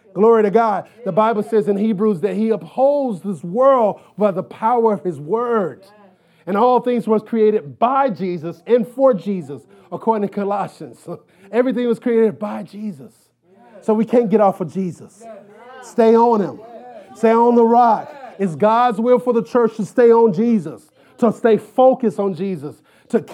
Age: 30-49